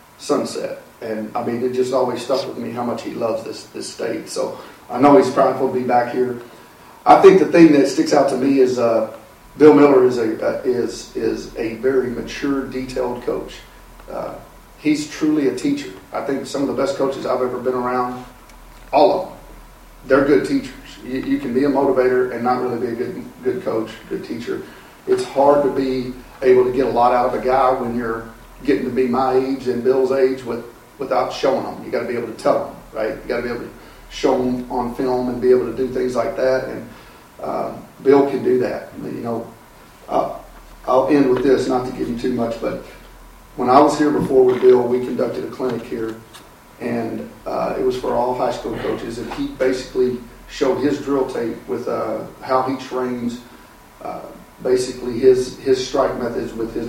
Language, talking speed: English, 210 wpm